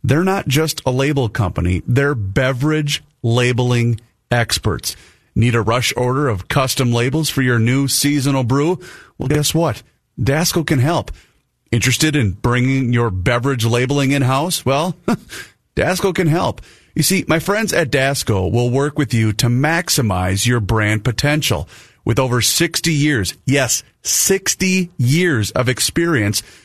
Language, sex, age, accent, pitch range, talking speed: English, male, 30-49, American, 115-150 Hz, 140 wpm